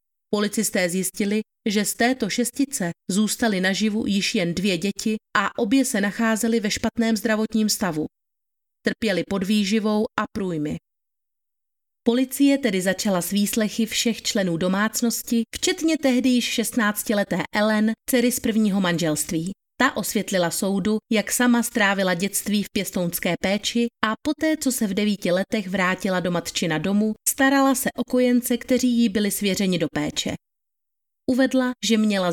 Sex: female